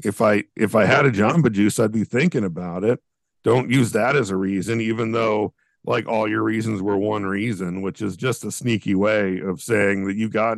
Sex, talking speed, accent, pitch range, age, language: male, 220 wpm, American, 100-120 Hz, 50-69, English